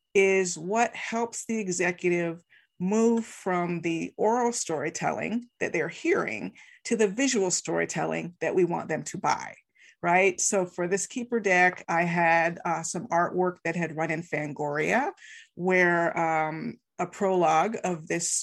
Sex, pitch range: female, 170-225 Hz